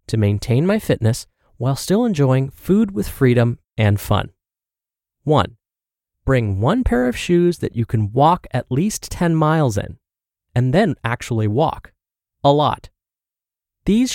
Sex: male